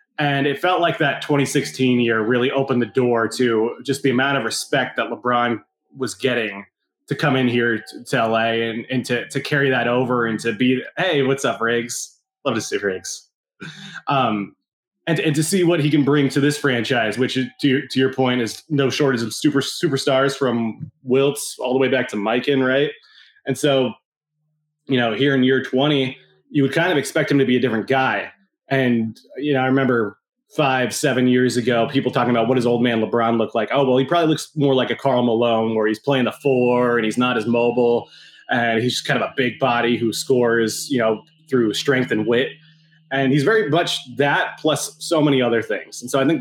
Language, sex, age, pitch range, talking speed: English, male, 20-39, 120-145 Hz, 215 wpm